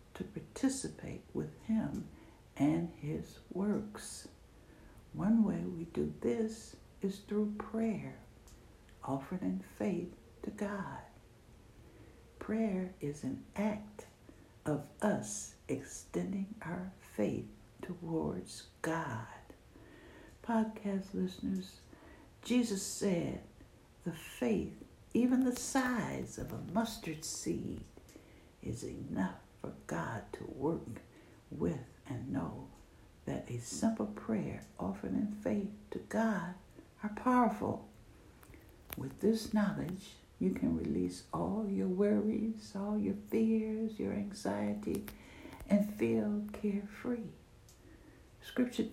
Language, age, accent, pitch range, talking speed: English, 60-79, American, 170-225 Hz, 100 wpm